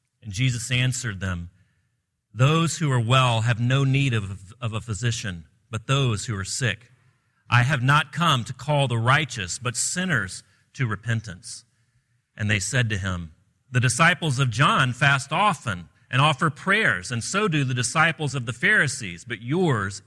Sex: male